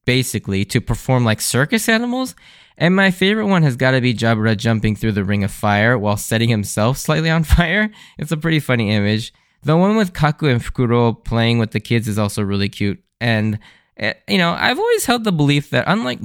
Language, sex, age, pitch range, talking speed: English, male, 20-39, 110-165 Hz, 205 wpm